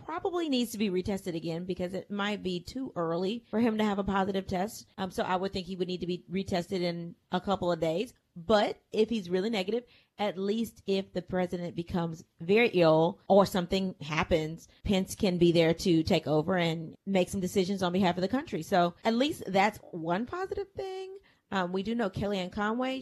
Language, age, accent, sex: English, 30-49, American, female